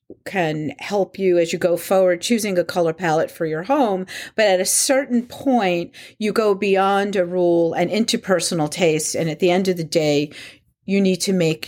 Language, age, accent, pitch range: English, 50-69, American, 155-195 Hz